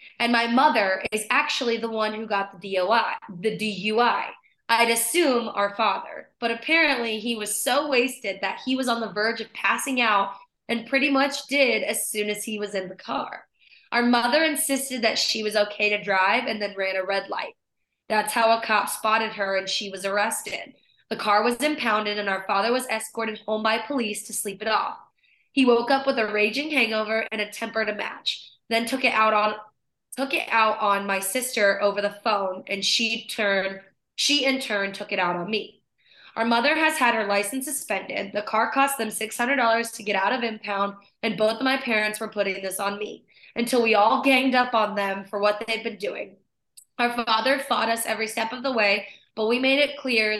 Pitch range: 205-240 Hz